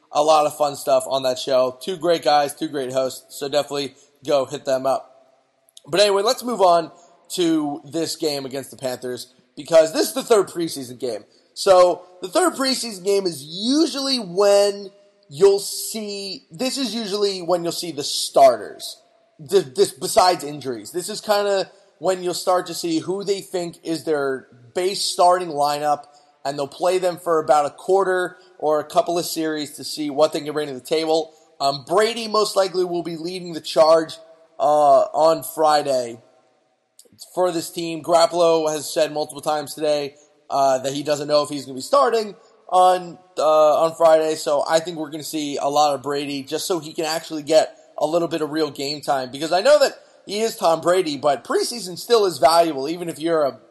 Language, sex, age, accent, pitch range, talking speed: English, male, 30-49, American, 145-190 Hz, 195 wpm